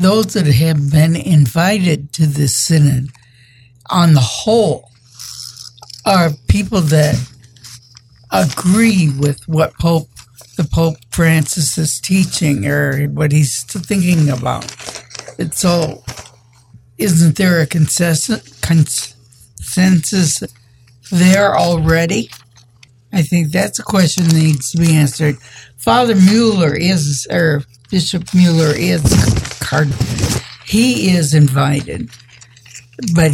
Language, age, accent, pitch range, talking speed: English, 60-79, American, 125-170 Hz, 100 wpm